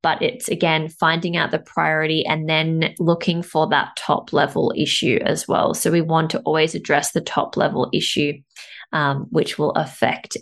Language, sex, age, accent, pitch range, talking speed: English, female, 20-39, Australian, 160-195 Hz, 180 wpm